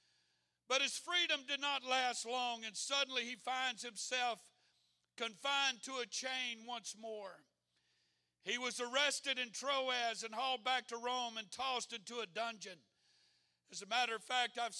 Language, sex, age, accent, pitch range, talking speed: English, male, 60-79, American, 220-260 Hz, 160 wpm